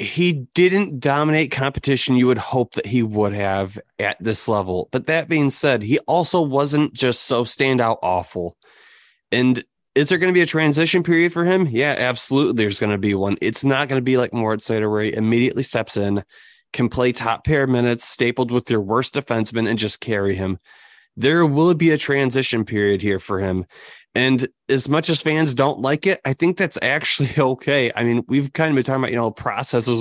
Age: 30-49